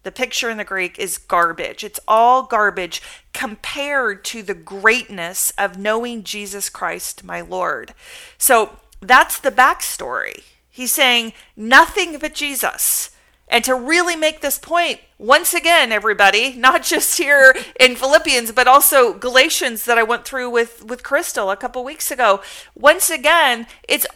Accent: American